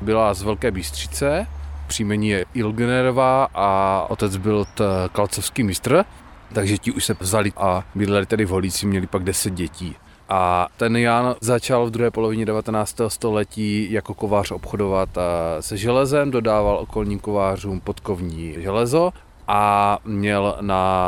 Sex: male